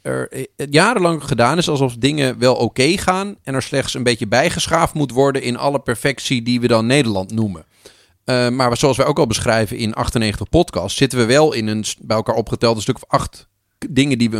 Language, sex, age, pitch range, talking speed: Dutch, male, 40-59, 115-150 Hz, 215 wpm